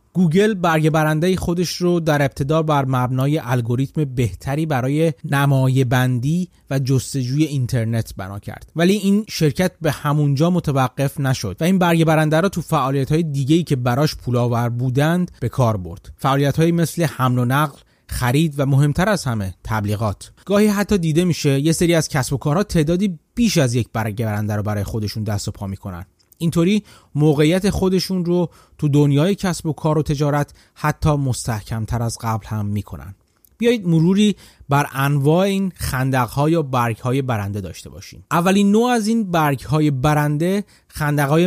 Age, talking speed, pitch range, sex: 30-49, 160 wpm, 120-165 Hz, male